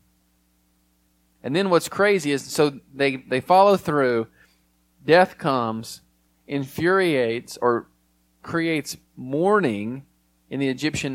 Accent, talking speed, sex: American, 100 wpm, male